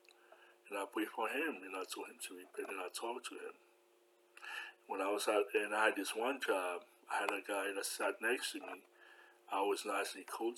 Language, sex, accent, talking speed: English, male, American, 220 wpm